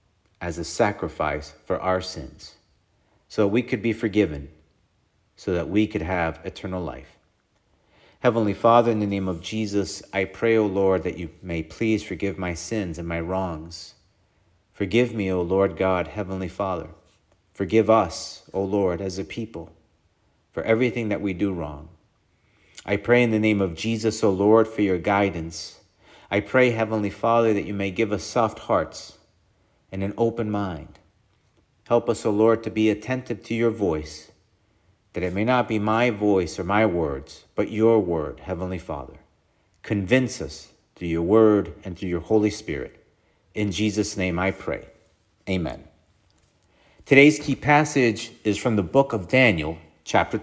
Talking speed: 165 wpm